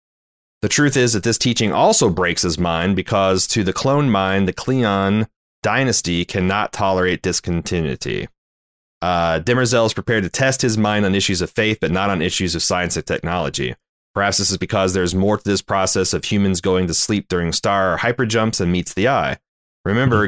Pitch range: 90-105 Hz